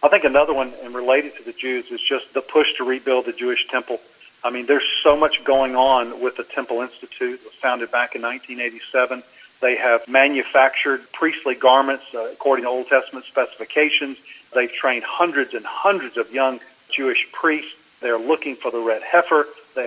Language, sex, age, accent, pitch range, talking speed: English, male, 40-59, American, 125-150 Hz, 185 wpm